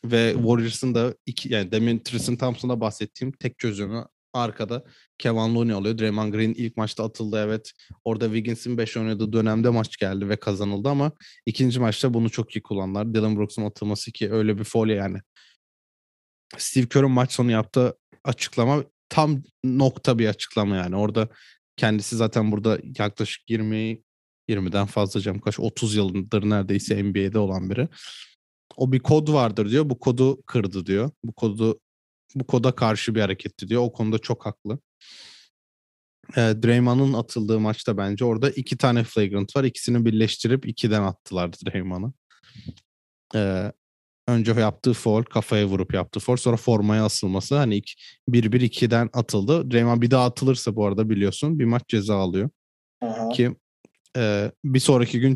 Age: 30-49